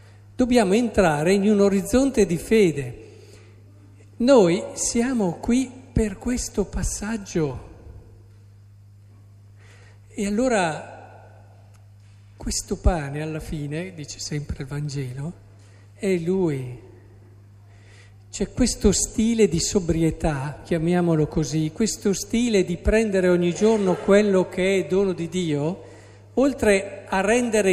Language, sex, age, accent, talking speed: Italian, male, 50-69, native, 100 wpm